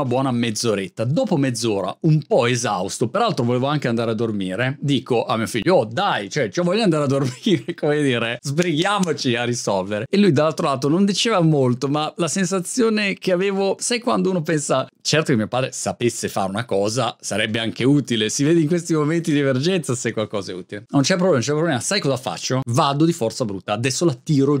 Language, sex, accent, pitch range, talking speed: Italian, male, native, 130-200 Hz, 205 wpm